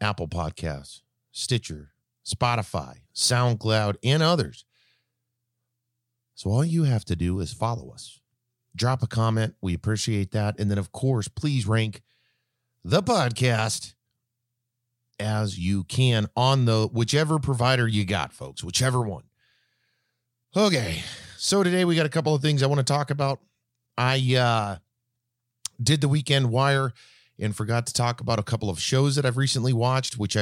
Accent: American